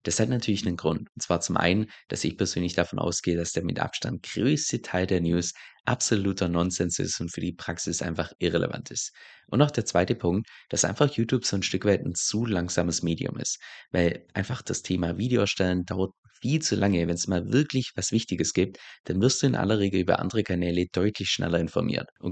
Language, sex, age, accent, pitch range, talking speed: German, male, 20-39, German, 85-110 Hz, 210 wpm